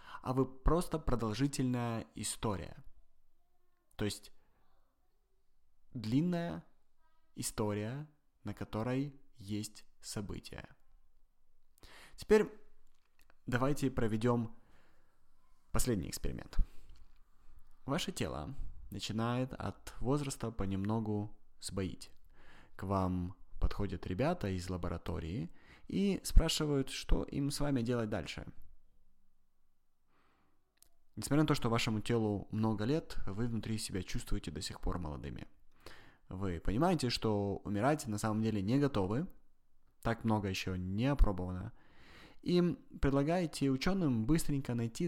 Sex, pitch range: male, 95-135 Hz